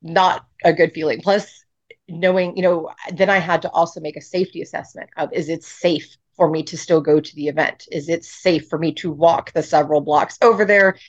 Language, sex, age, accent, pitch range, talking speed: English, female, 30-49, American, 155-190 Hz, 220 wpm